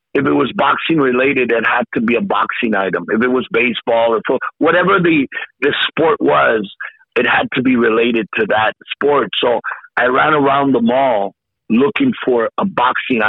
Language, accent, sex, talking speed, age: English, American, male, 185 wpm, 50-69